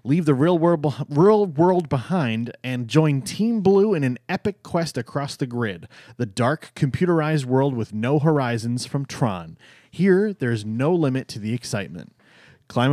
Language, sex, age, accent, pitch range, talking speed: English, male, 30-49, American, 125-165 Hz, 155 wpm